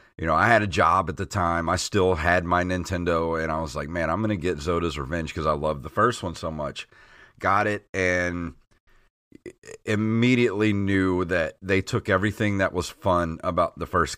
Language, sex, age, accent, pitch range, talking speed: English, male, 30-49, American, 85-105 Hz, 205 wpm